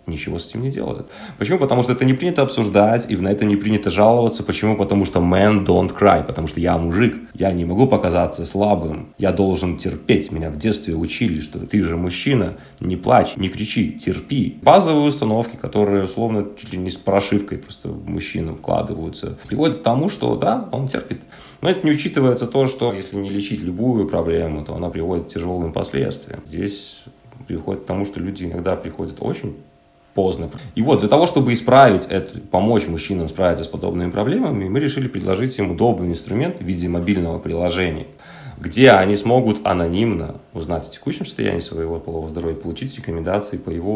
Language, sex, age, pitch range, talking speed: Russian, male, 20-39, 90-120 Hz, 185 wpm